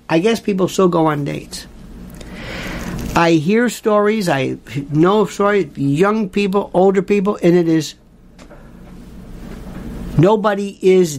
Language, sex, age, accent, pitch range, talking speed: English, male, 50-69, American, 165-225 Hz, 120 wpm